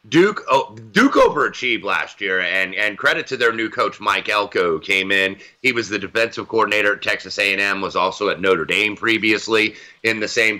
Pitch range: 105-125 Hz